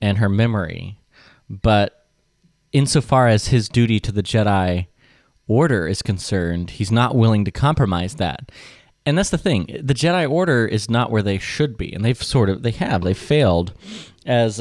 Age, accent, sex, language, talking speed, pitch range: 30-49, American, male, English, 175 wpm, 95-125 Hz